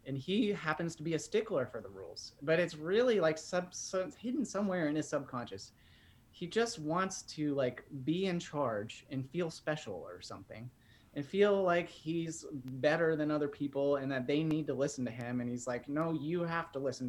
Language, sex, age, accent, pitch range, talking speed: English, male, 30-49, American, 125-165 Hz, 205 wpm